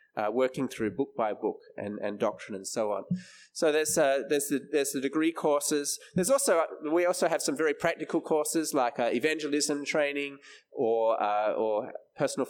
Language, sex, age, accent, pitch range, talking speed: English, male, 20-39, Australian, 120-155 Hz, 185 wpm